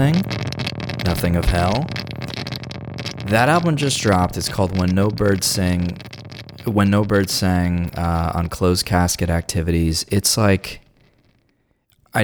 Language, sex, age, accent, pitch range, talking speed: English, male, 20-39, American, 85-105 Hz, 125 wpm